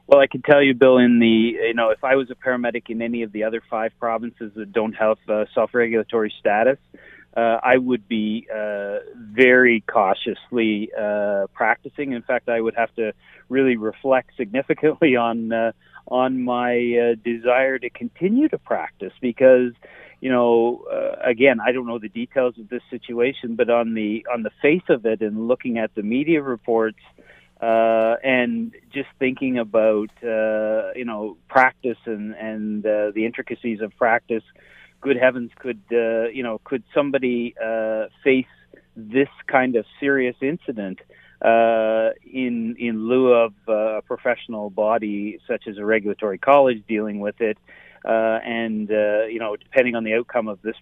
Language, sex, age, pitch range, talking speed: English, male, 40-59, 110-130 Hz, 170 wpm